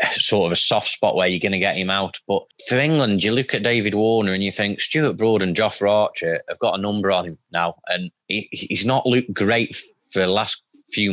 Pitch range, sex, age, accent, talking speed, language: 95-115 Hz, male, 20-39, British, 245 wpm, English